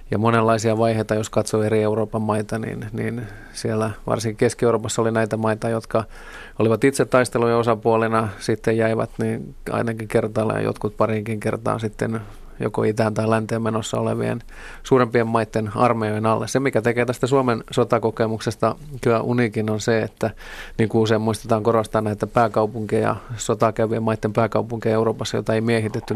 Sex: male